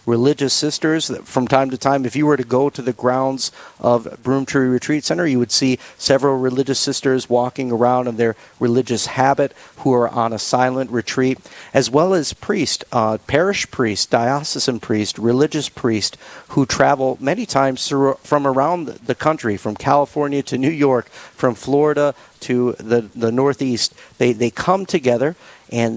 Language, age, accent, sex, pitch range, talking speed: English, 40-59, American, male, 120-140 Hz, 165 wpm